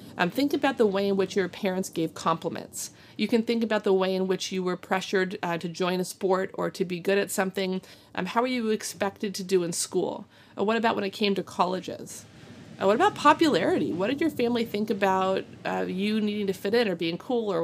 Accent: American